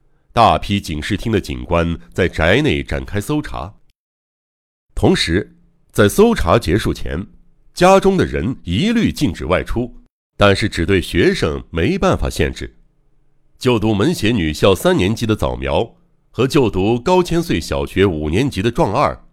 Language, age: Chinese, 60-79